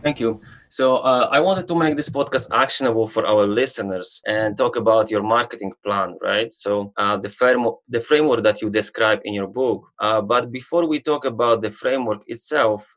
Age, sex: 20-39, male